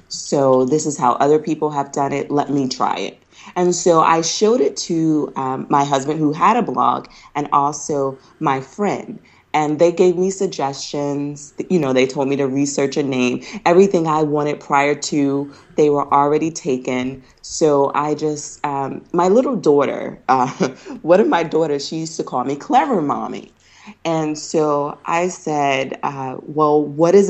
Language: English